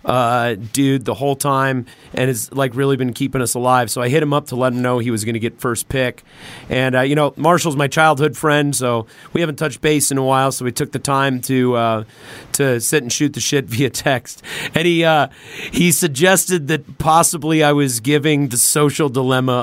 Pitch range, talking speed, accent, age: 120-150 Hz, 225 wpm, American, 40-59